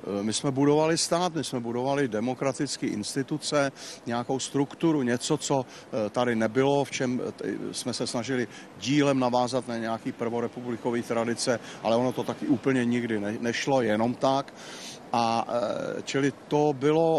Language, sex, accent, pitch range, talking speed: Czech, male, native, 115-140 Hz, 135 wpm